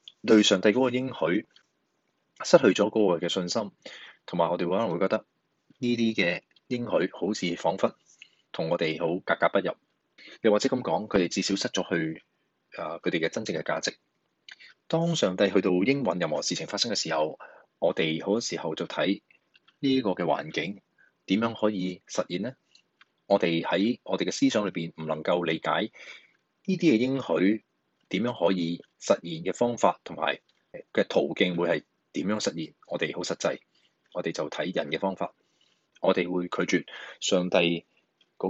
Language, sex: Chinese, male